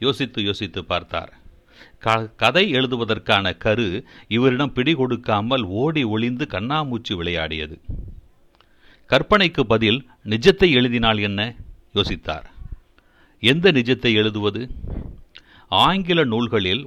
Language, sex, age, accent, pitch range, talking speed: Tamil, male, 60-79, native, 100-135 Hz, 85 wpm